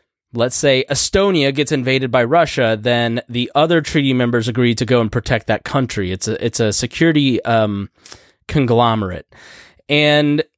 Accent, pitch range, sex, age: American, 115-145 Hz, male, 20-39